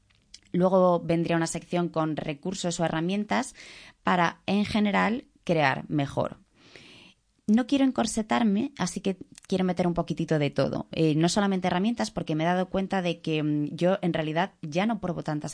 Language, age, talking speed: Spanish, 20-39, 160 wpm